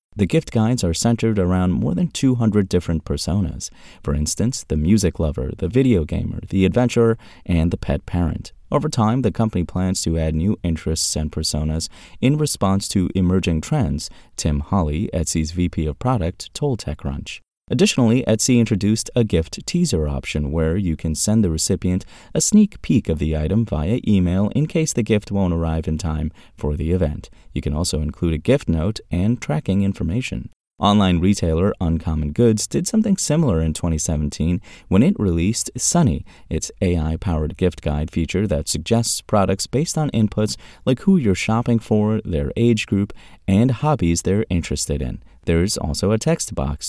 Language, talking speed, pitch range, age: English, 170 wpm, 80-115 Hz, 30-49